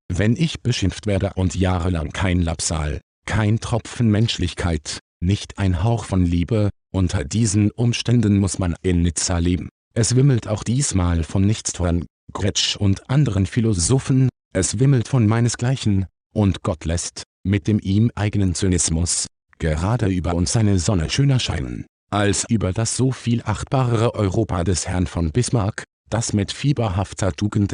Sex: male